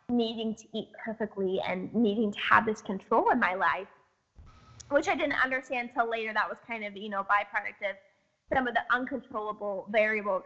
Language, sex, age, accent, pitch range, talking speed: English, female, 10-29, American, 205-245 Hz, 185 wpm